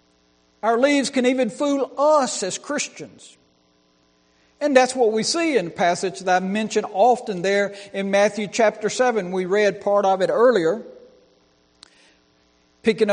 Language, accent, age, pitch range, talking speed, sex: English, American, 60-79, 190-255 Hz, 145 wpm, male